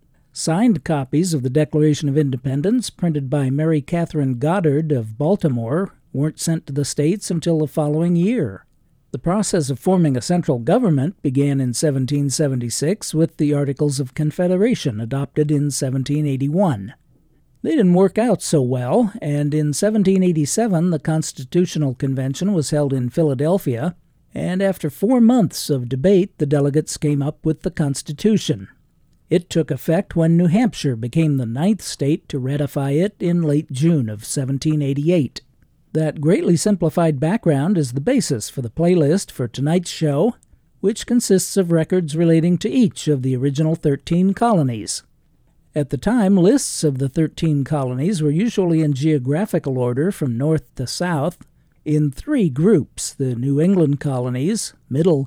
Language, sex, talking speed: English, male, 150 wpm